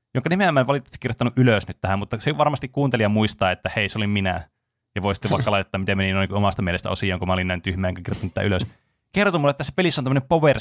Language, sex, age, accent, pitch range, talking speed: Finnish, male, 20-39, native, 100-125 Hz, 250 wpm